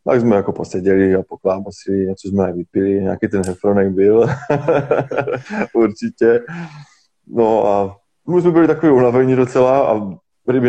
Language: Czech